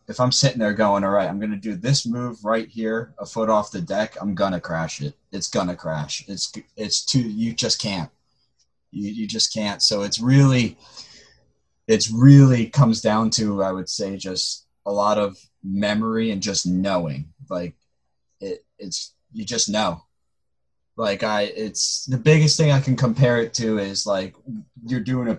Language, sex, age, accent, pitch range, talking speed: English, male, 20-39, American, 95-125 Hz, 190 wpm